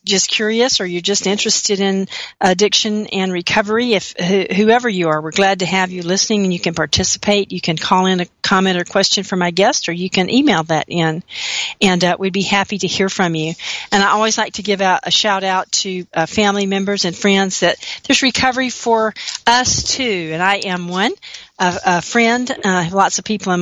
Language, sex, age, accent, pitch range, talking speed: English, female, 40-59, American, 175-210 Hz, 220 wpm